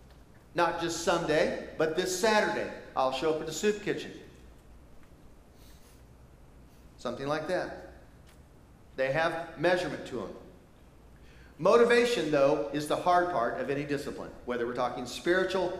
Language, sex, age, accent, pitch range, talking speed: English, male, 40-59, American, 120-170 Hz, 130 wpm